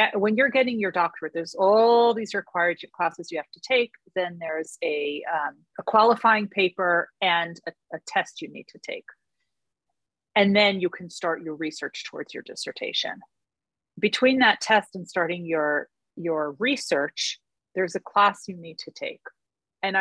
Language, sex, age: English, female, 40-59